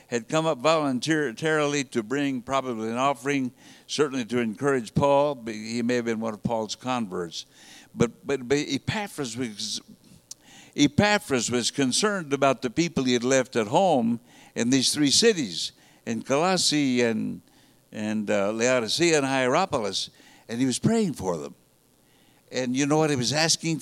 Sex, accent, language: male, American, English